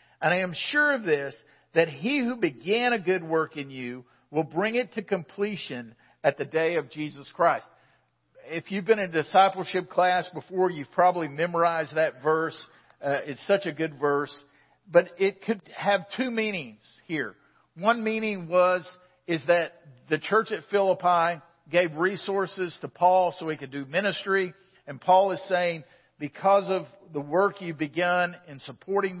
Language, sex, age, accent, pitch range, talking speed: English, male, 50-69, American, 140-185 Hz, 165 wpm